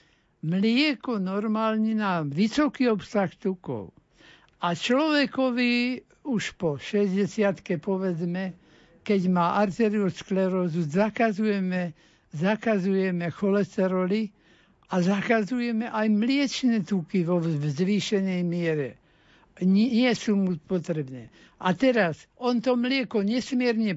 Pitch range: 180-225 Hz